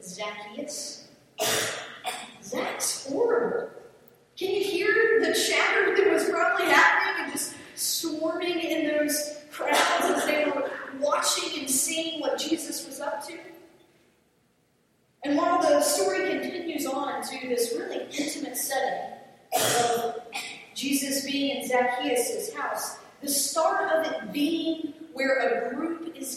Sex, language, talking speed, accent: female, English, 125 wpm, American